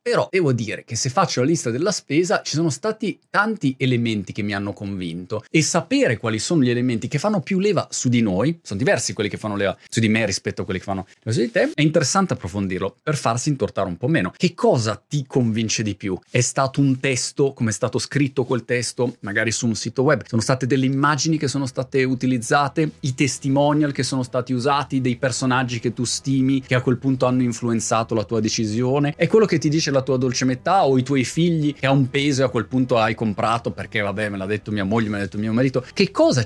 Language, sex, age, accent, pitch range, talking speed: Italian, male, 30-49, native, 110-145 Hz, 240 wpm